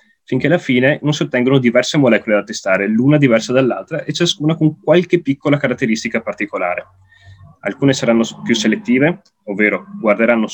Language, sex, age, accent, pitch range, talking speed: Italian, male, 20-39, native, 115-150 Hz, 150 wpm